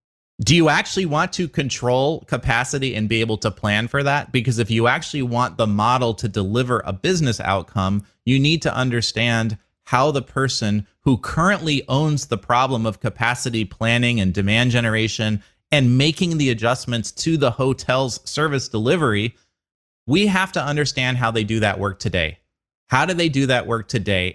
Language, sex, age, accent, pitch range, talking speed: English, male, 30-49, American, 110-140 Hz, 175 wpm